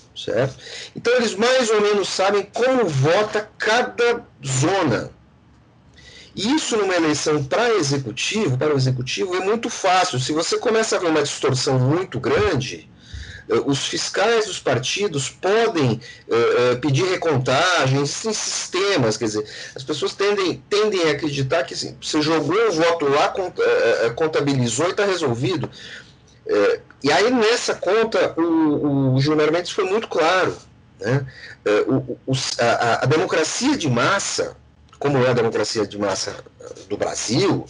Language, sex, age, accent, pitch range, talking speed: Portuguese, male, 40-59, Brazilian, 140-230 Hz, 130 wpm